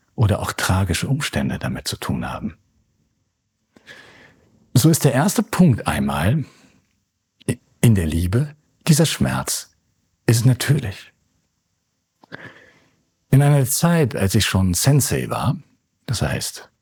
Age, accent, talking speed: 60-79, German, 110 wpm